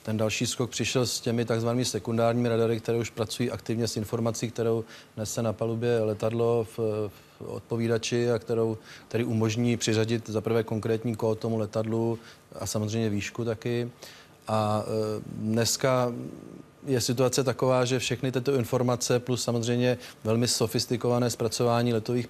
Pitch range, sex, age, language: 110-120 Hz, male, 30-49, Czech